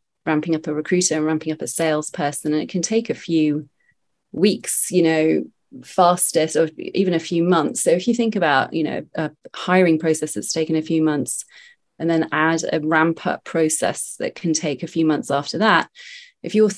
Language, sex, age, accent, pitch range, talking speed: English, female, 30-49, British, 155-180 Hz, 200 wpm